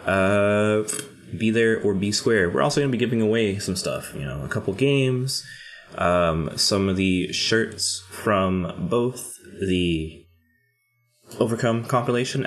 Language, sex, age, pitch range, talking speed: English, male, 20-39, 90-120 Hz, 150 wpm